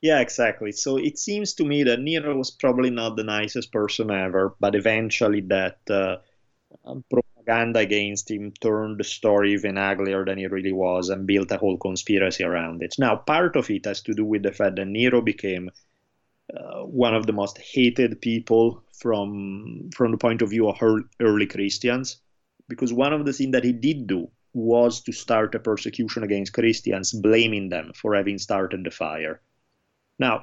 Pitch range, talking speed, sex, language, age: 100-120 Hz, 180 wpm, male, English, 30-49